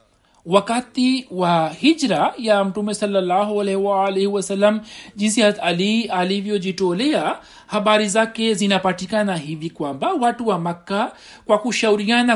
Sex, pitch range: male, 190-240 Hz